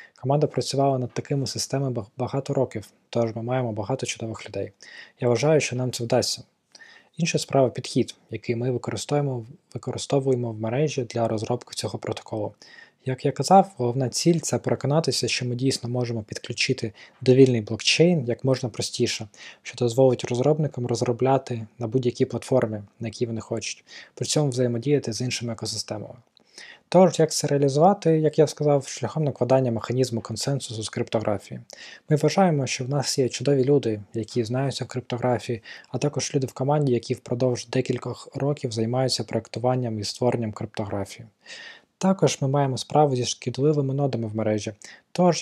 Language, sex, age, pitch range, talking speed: Ukrainian, male, 20-39, 120-140 Hz, 155 wpm